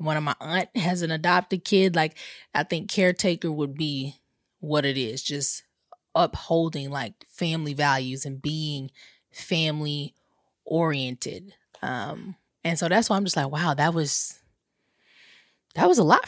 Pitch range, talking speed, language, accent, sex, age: 160-240 Hz, 150 wpm, English, American, female, 20-39